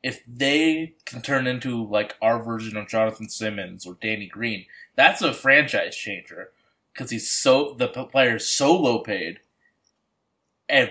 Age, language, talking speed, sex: 20-39, English, 155 wpm, male